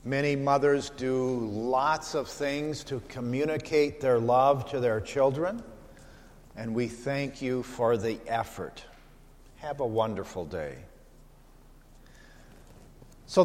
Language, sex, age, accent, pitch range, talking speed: English, male, 50-69, American, 125-155 Hz, 110 wpm